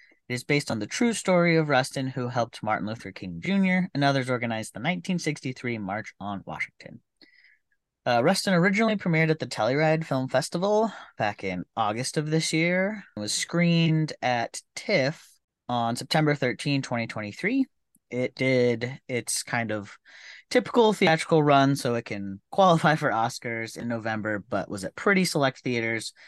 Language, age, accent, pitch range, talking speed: English, 30-49, American, 115-175 Hz, 160 wpm